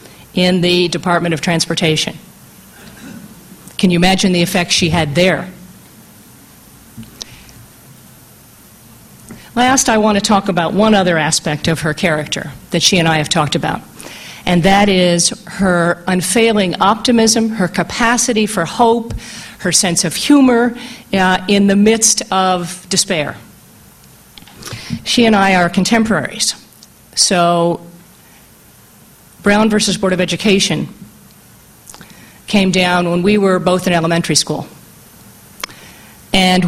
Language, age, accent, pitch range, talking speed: English, 40-59, American, 175-210 Hz, 120 wpm